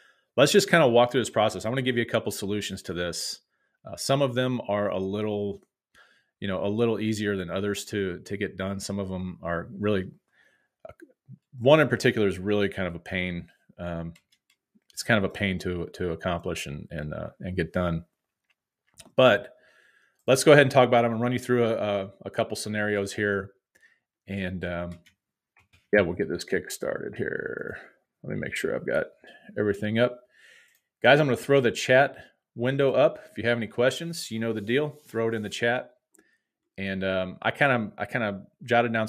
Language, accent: English, American